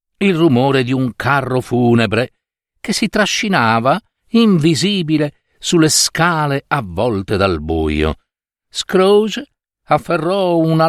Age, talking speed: 50-69, 100 wpm